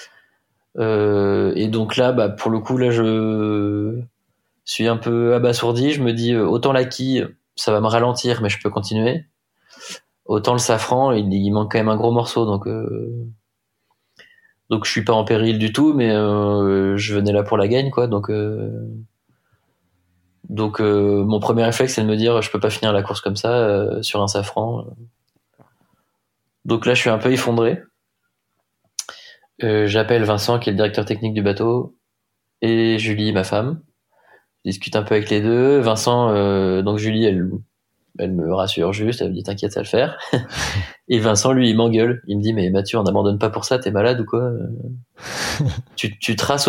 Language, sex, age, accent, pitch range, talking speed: French, male, 20-39, French, 105-120 Hz, 190 wpm